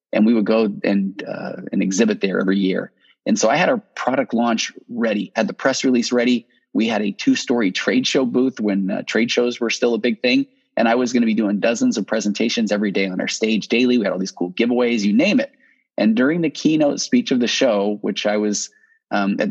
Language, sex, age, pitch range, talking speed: English, male, 30-49, 100-150 Hz, 240 wpm